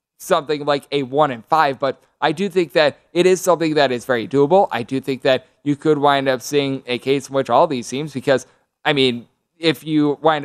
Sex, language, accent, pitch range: male, English, American, 135-155 Hz